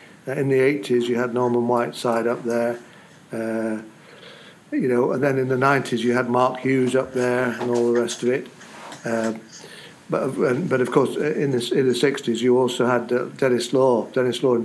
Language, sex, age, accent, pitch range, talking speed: English, male, 60-79, British, 120-130 Hz, 195 wpm